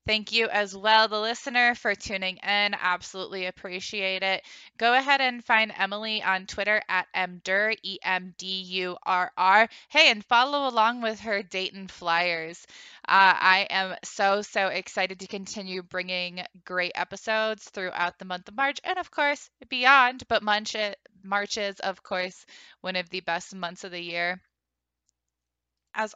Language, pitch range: English, 180-215 Hz